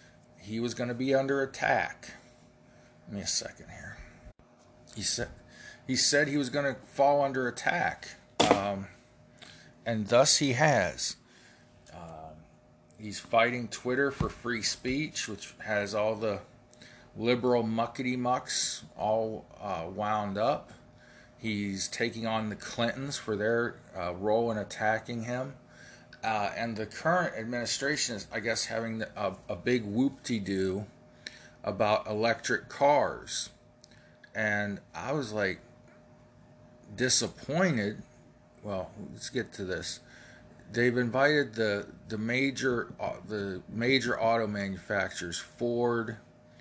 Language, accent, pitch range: English, American, 105-125 Hz